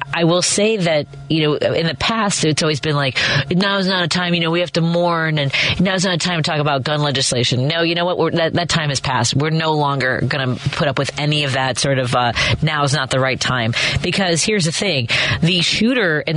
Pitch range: 140-180 Hz